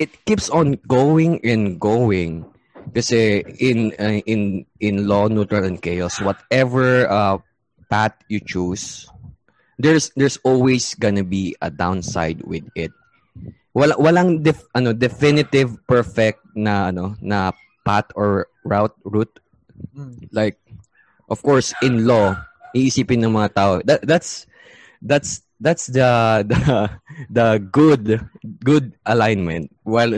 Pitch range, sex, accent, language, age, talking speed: 100-130 Hz, male, Filipino, English, 20-39, 120 wpm